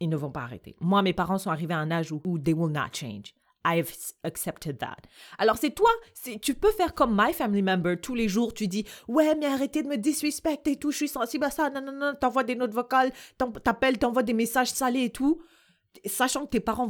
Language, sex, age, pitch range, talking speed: French, female, 30-49, 175-260 Hz, 240 wpm